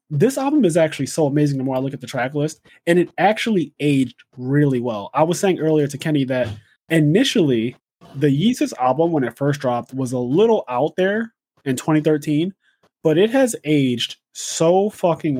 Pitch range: 130-165 Hz